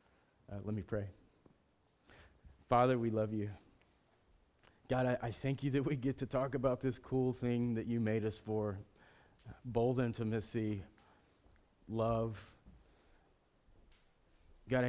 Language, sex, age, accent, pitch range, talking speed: English, male, 30-49, American, 105-125 Hz, 125 wpm